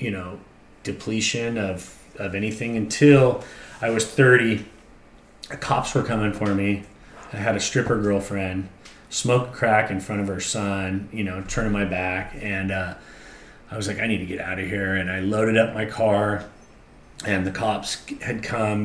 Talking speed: 175 wpm